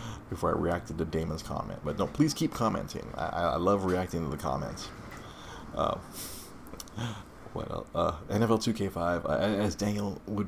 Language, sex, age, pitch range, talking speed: English, male, 30-49, 85-115 Hz, 155 wpm